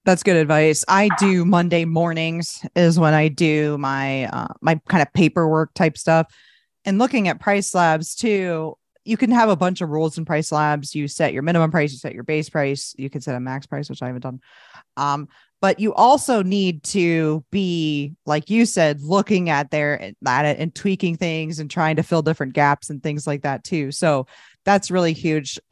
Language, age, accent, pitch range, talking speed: English, 20-39, American, 145-180 Hz, 205 wpm